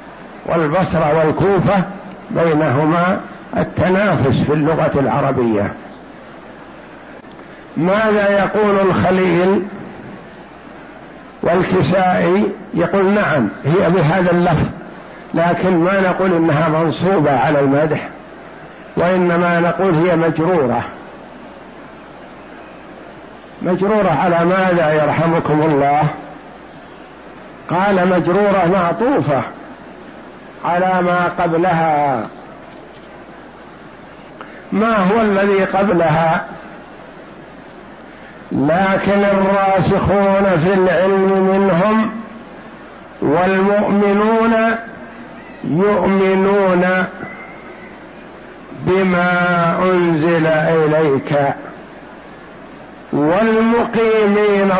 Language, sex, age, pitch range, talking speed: Arabic, male, 60-79, 165-195 Hz, 60 wpm